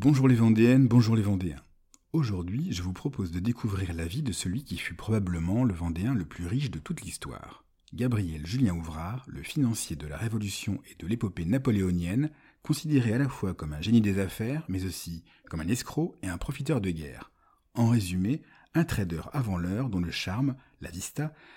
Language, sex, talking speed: French, male, 190 wpm